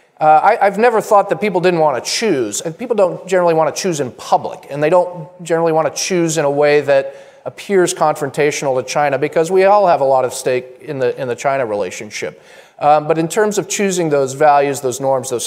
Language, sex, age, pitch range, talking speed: English, male, 40-59, 135-175 Hz, 235 wpm